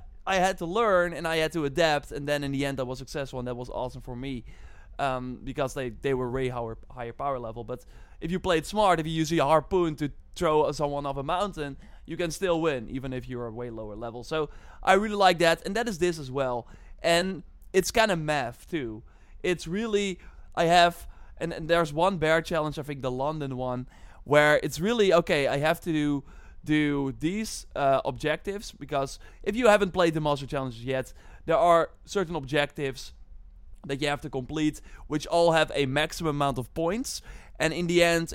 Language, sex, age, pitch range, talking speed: English, male, 20-39, 130-165 Hz, 210 wpm